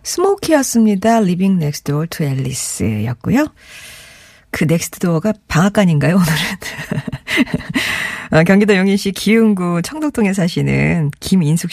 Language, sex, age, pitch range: Korean, female, 40-59, 160-230 Hz